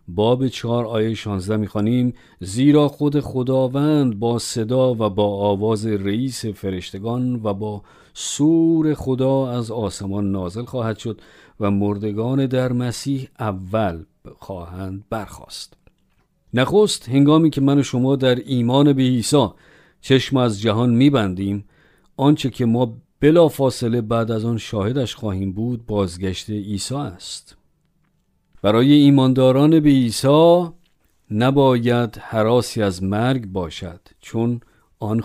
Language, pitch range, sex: Persian, 100-130 Hz, male